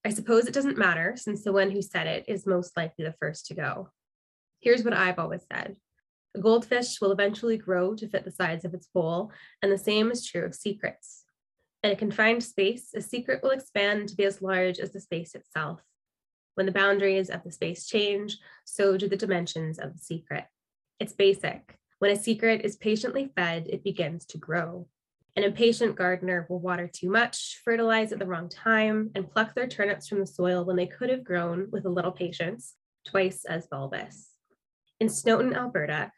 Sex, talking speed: female, 195 wpm